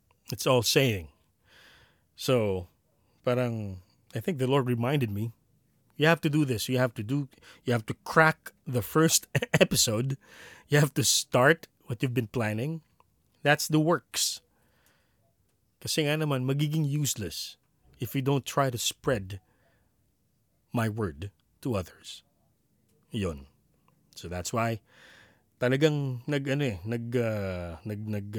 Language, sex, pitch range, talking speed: Filipino, male, 100-140 Hz, 135 wpm